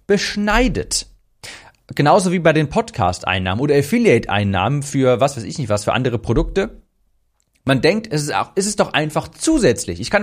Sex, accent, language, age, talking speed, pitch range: male, German, German, 40-59, 170 wpm, 105-150 Hz